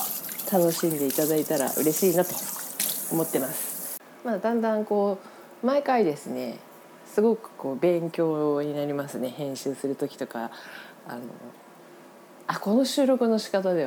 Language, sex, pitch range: Japanese, female, 150-210 Hz